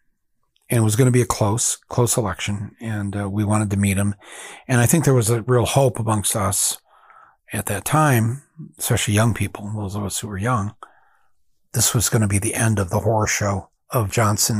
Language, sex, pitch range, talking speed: English, male, 100-115 Hz, 215 wpm